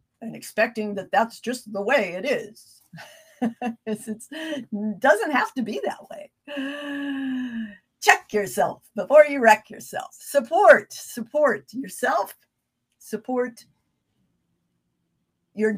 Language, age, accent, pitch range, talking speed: English, 50-69, American, 200-265 Hz, 105 wpm